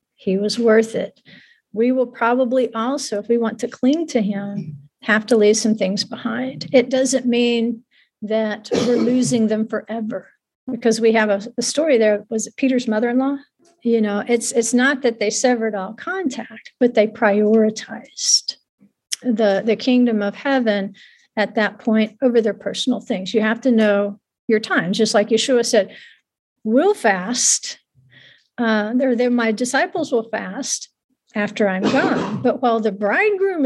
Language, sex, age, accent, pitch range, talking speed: English, female, 50-69, American, 220-260 Hz, 155 wpm